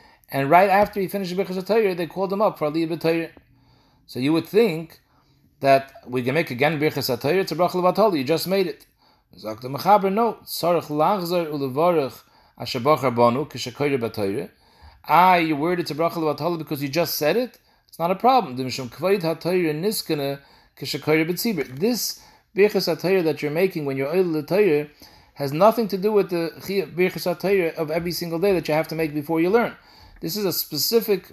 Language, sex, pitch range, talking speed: English, male, 145-190 Hz, 165 wpm